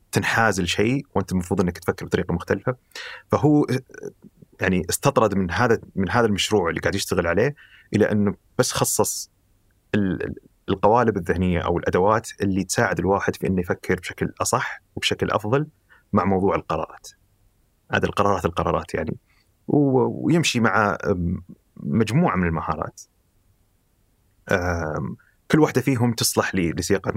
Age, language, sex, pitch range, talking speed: 30-49, Arabic, male, 95-120 Hz, 120 wpm